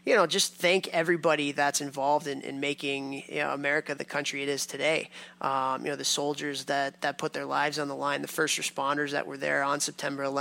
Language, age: English, 20-39